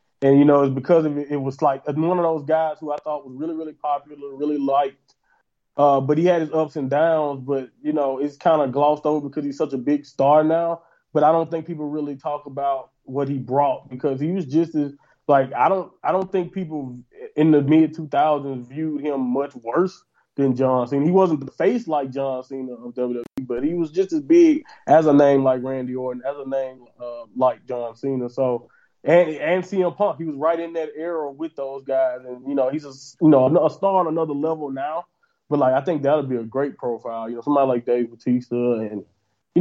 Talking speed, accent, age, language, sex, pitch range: 230 wpm, American, 20-39, English, male, 130-160 Hz